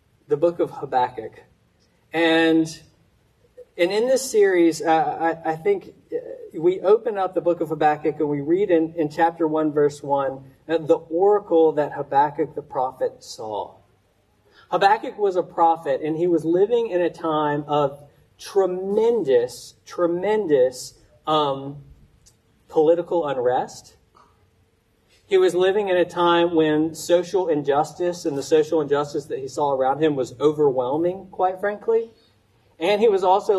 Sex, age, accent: male, 40-59, American